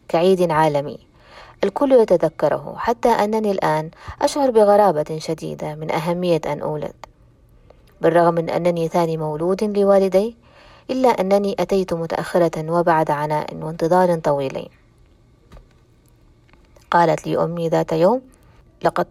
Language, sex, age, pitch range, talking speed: Arabic, female, 20-39, 155-200 Hz, 105 wpm